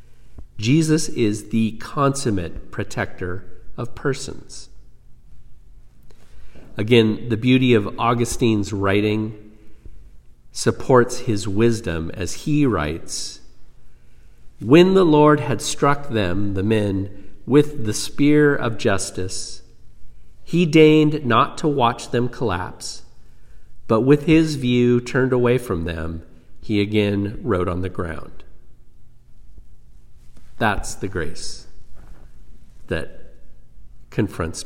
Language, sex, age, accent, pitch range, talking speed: English, male, 50-69, American, 95-125 Hz, 100 wpm